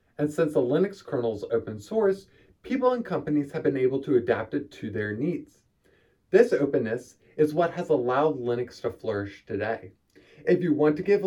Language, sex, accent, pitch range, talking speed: English, male, American, 120-195 Hz, 185 wpm